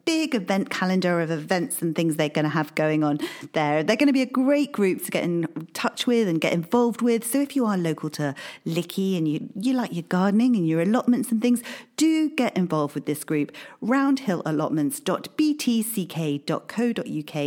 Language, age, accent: English, 40-59, British